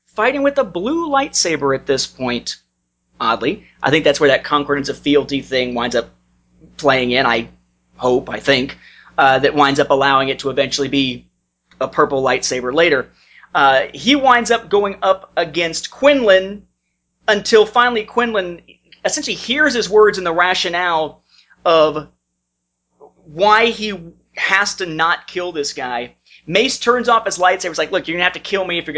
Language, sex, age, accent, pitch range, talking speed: English, male, 30-49, American, 135-215 Hz, 170 wpm